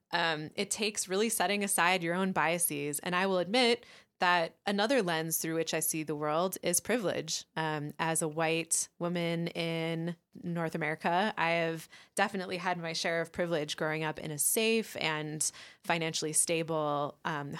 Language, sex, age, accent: English, female, 20-39, American